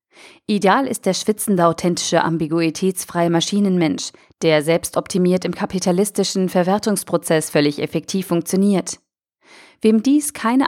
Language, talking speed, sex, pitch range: German, 100 wpm, female, 170-215 Hz